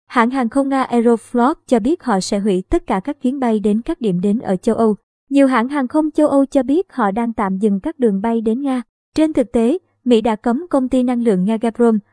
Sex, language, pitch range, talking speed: male, Vietnamese, 215-265 Hz, 250 wpm